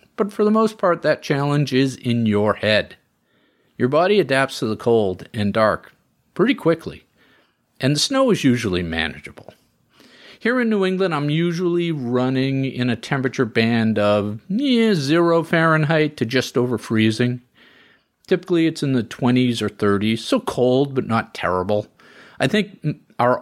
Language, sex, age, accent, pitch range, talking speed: English, male, 40-59, American, 105-170 Hz, 155 wpm